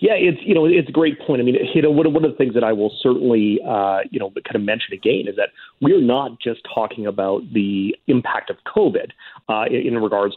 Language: English